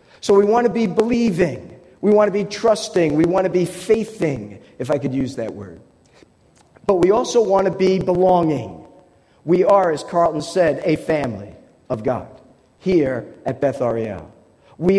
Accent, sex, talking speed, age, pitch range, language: American, male, 170 wpm, 50-69, 145-185 Hz, English